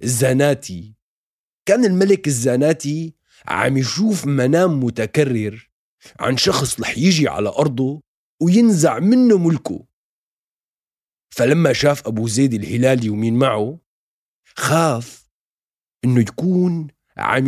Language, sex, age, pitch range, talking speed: Arabic, male, 40-59, 115-160 Hz, 95 wpm